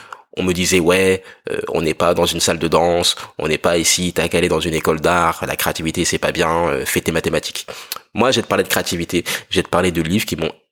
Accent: French